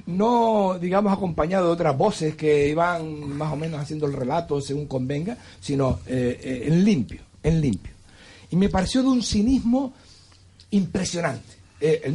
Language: Spanish